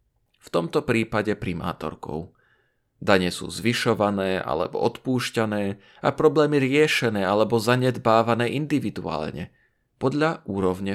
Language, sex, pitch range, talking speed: Slovak, male, 105-130 Hz, 95 wpm